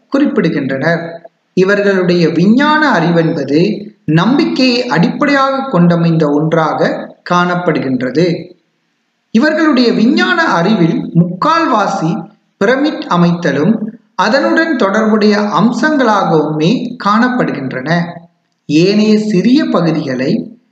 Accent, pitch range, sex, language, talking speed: native, 165-245 Hz, male, Tamil, 65 wpm